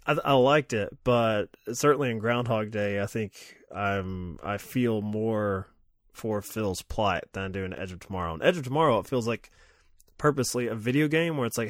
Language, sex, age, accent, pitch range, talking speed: English, male, 20-39, American, 100-115 Hz, 205 wpm